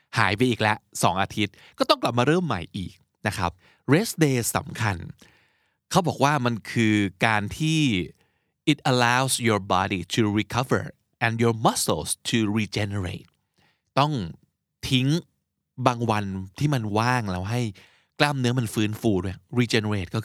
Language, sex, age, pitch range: Thai, male, 20-39, 100-130 Hz